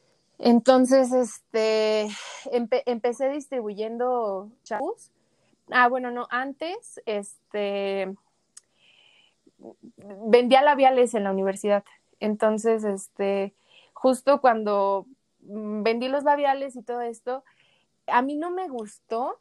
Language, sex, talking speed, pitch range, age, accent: English, female, 95 wpm, 215-265 Hz, 20-39, Mexican